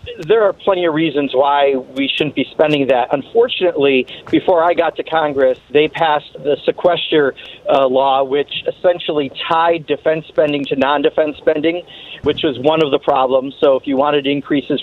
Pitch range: 140-170 Hz